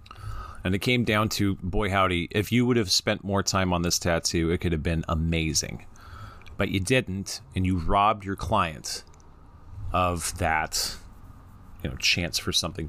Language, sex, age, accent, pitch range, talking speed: English, male, 30-49, American, 85-100 Hz, 170 wpm